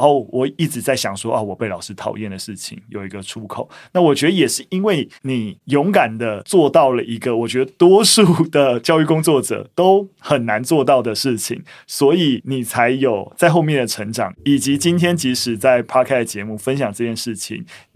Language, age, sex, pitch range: Chinese, 20-39, male, 115-145 Hz